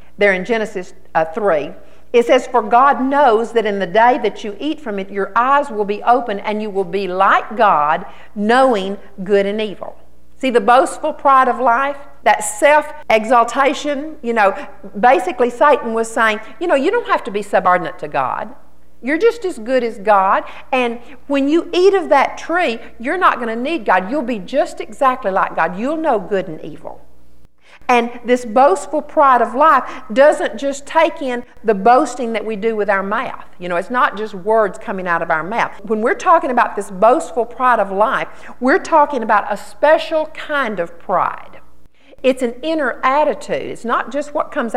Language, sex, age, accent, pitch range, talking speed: English, female, 50-69, American, 210-285 Hz, 190 wpm